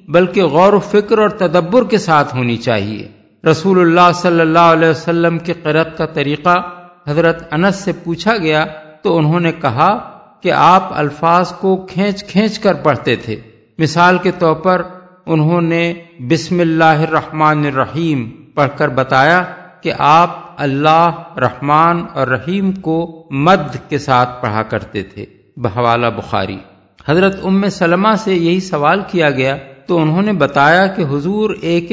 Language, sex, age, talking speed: Urdu, male, 50-69, 150 wpm